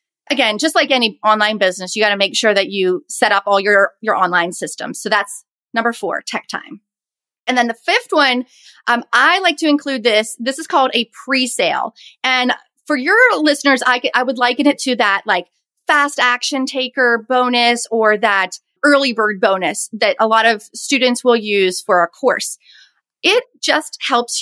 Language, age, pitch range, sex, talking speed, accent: English, 30-49, 220-280 Hz, female, 190 wpm, American